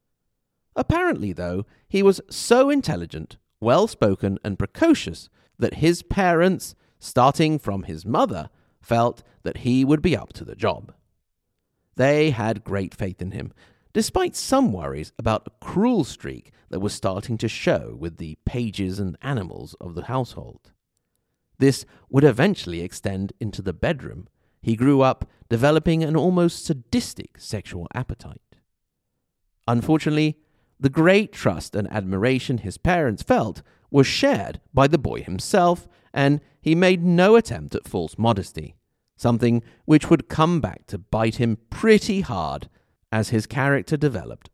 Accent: British